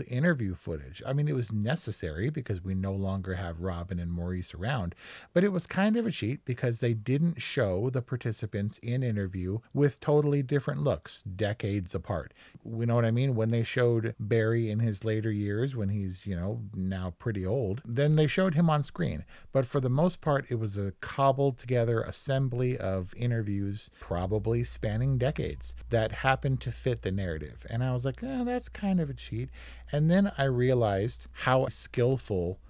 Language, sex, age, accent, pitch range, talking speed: English, male, 50-69, American, 100-130 Hz, 190 wpm